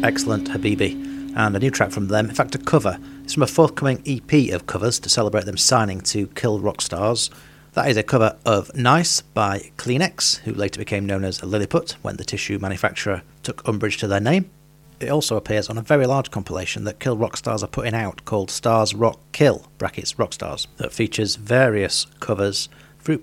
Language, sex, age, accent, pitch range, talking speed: English, male, 40-59, British, 105-140 Hz, 190 wpm